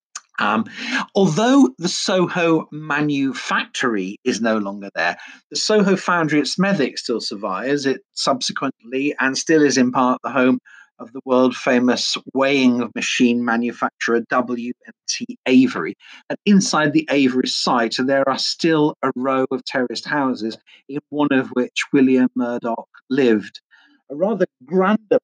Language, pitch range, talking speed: English, 125-155 Hz, 135 wpm